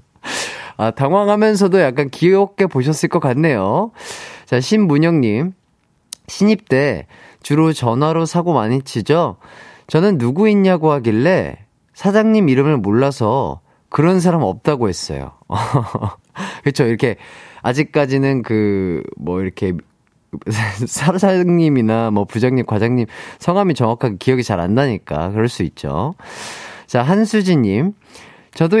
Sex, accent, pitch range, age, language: male, native, 115-185 Hz, 30-49, Korean